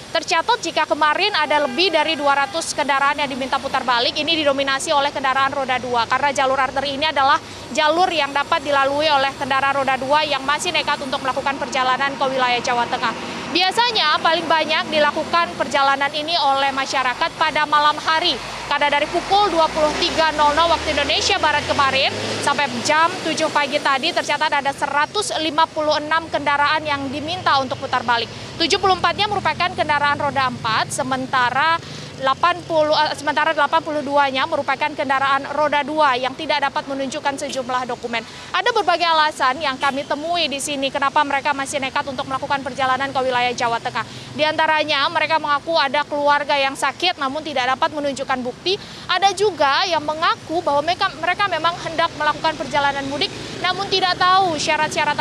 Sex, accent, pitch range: female, native, 275-320 Hz